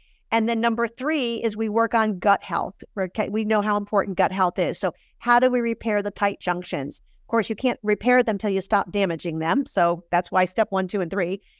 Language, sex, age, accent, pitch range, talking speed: English, female, 50-69, American, 195-240 Hz, 230 wpm